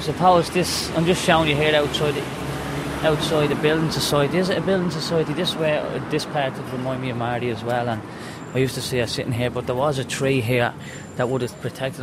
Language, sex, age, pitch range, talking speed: English, male, 20-39, 115-145 Hz, 240 wpm